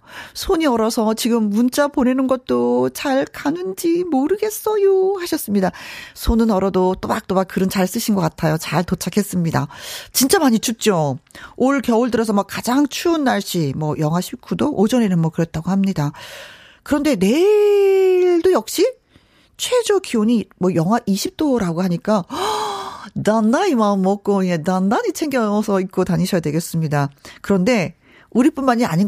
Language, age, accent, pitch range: Korean, 40-59, native, 175-285 Hz